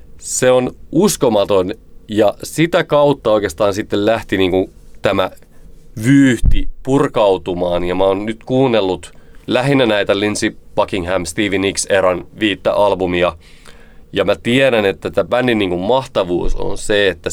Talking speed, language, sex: 130 wpm, Finnish, male